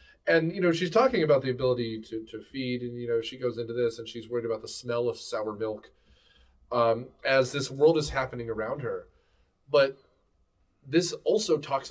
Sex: male